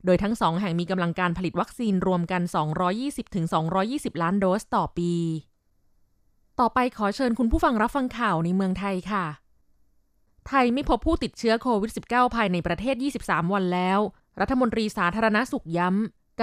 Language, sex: Thai, female